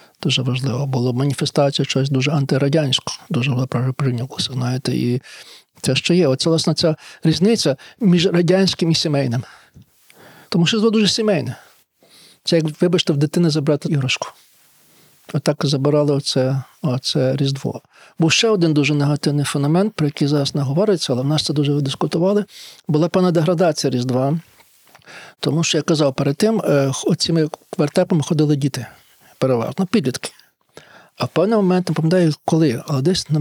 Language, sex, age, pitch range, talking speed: Ukrainian, male, 50-69, 140-175 Hz, 140 wpm